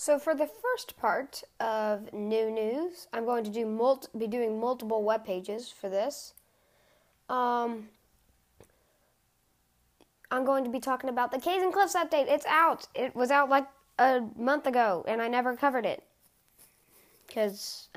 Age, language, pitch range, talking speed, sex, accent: 20-39, English, 215-290 Hz, 155 wpm, female, American